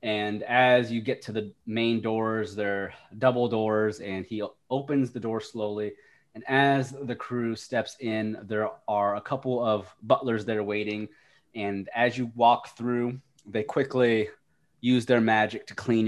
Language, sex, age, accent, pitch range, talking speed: English, male, 20-39, American, 105-120 Hz, 170 wpm